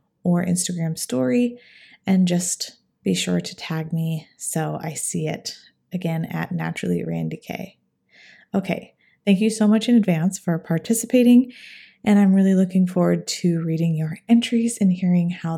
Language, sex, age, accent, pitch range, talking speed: English, female, 20-39, American, 165-205 Hz, 155 wpm